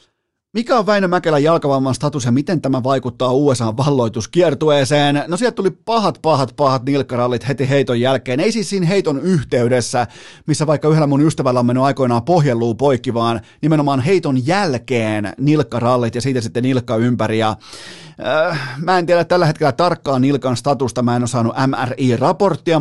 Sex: male